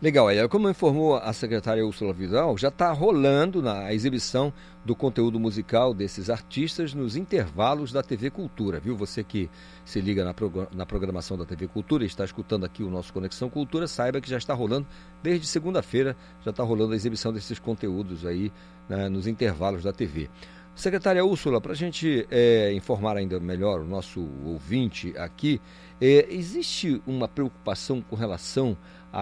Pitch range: 95-135 Hz